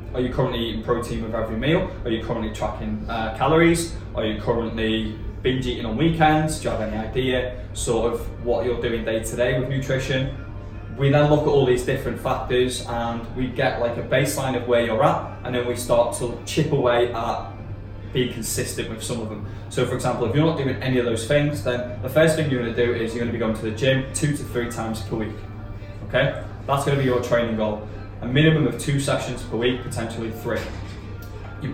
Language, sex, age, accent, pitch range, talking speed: English, male, 10-29, British, 110-125 Hz, 225 wpm